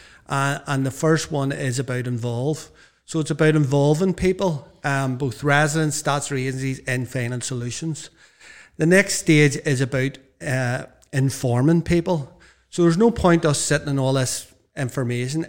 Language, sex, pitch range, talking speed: English, male, 125-155 Hz, 150 wpm